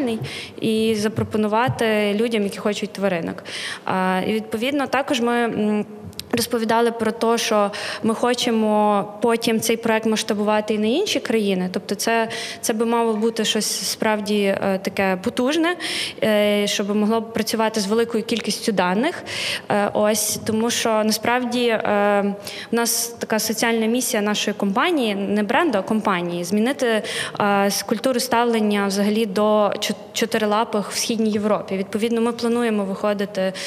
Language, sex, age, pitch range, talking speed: Ukrainian, female, 20-39, 210-240 Hz, 125 wpm